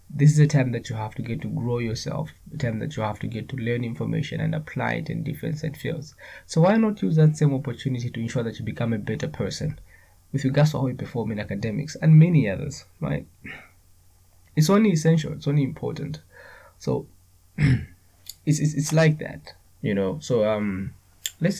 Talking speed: 205 wpm